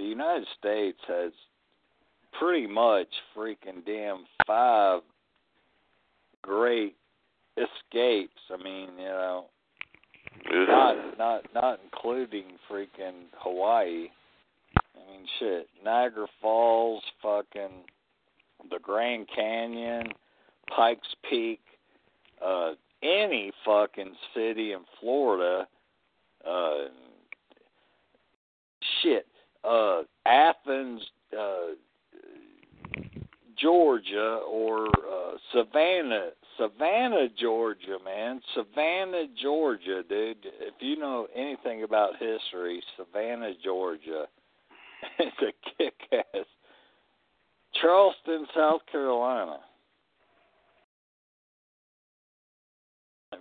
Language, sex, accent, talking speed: English, male, American, 80 wpm